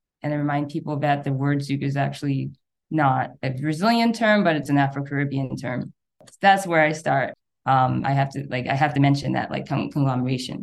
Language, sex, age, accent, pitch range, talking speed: English, female, 20-39, American, 135-155 Hz, 210 wpm